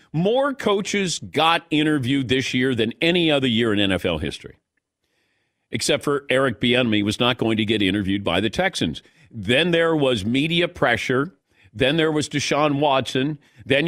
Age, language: 50-69, English